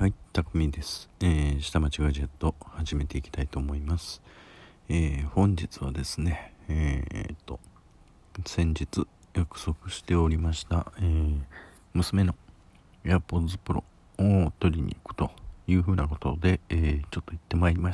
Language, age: Japanese, 50-69